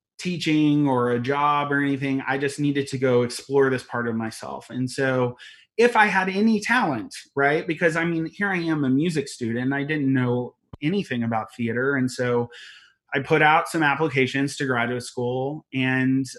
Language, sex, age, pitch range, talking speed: English, male, 30-49, 120-140 Hz, 185 wpm